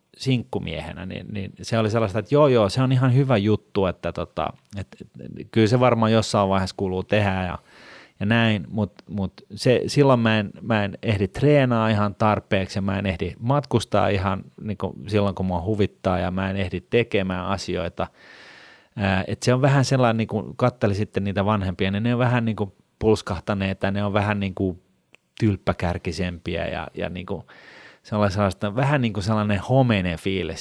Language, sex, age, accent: Finnish, male, 30-49, native